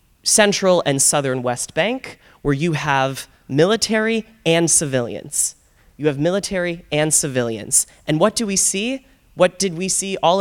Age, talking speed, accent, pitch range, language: 20-39, 150 wpm, American, 130-175 Hz, English